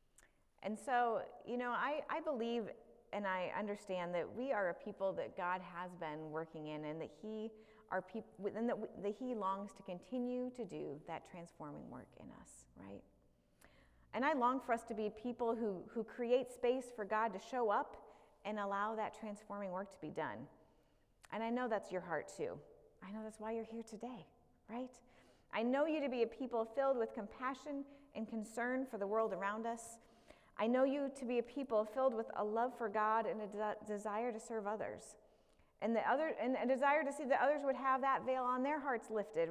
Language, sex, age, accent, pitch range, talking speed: English, female, 30-49, American, 200-255 Hz, 200 wpm